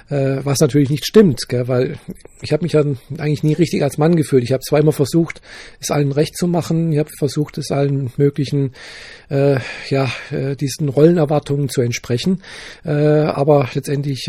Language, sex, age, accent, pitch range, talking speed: German, male, 40-59, German, 130-155 Hz, 170 wpm